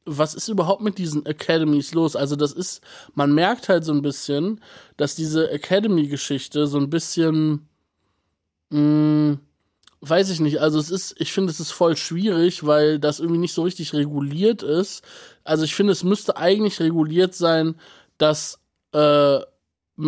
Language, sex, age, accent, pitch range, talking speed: German, male, 20-39, German, 145-175 Hz, 160 wpm